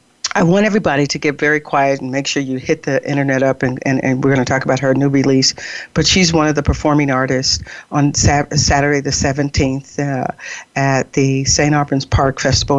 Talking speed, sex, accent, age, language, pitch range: 205 wpm, female, American, 50-69, English, 135-155 Hz